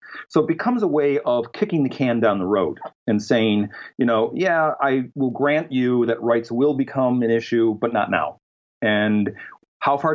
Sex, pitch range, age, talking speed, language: male, 105-140 Hz, 40-59, 195 wpm, English